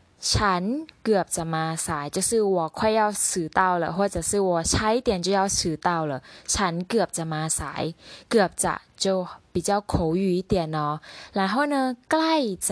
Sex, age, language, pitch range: female, 10-29, Thai, 175-235 Hz